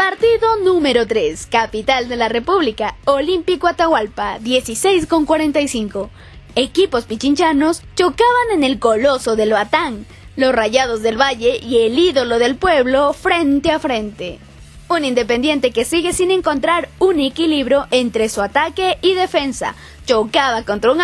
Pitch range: 245-365 Hz